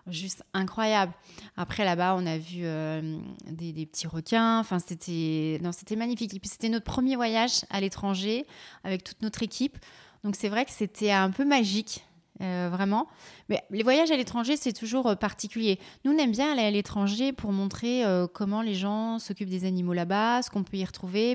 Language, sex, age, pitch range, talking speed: French, female, 30-49, 170-215 Hz, 195 wpm